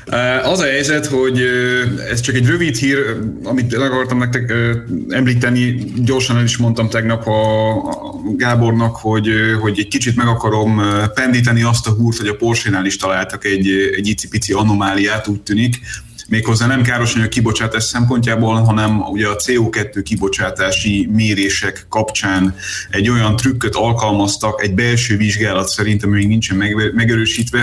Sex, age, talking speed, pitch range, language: male, 30-49, 140 wpm, 95-115 Hz, Hungarian